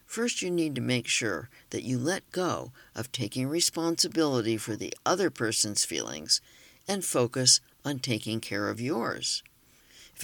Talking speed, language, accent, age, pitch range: 150 wpm, English, American, 60-79, 115-155 Hz